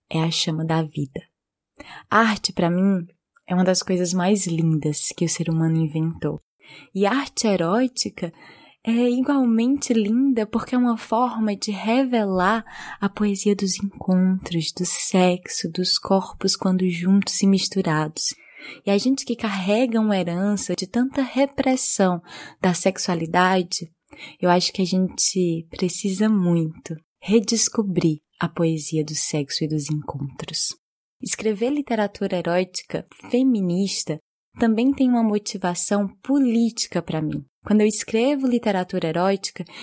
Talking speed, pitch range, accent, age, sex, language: 130 wpm, 170-225 Hz, Brazilian, 20-39, female, Portuguese